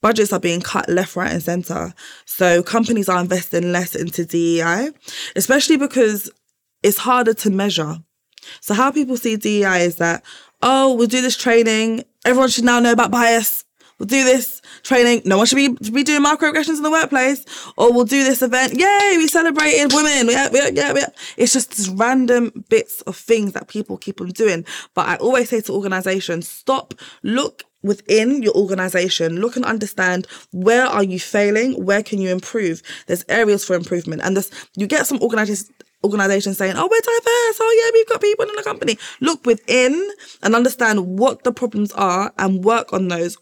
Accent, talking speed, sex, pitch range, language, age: British, 190 wpm, female, 190-255 Hz, English, 20-39